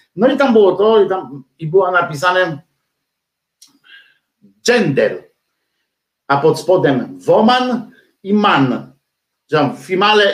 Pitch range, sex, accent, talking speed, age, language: 155-210 Hz, male, native, 105 wpm, 50-69, Polish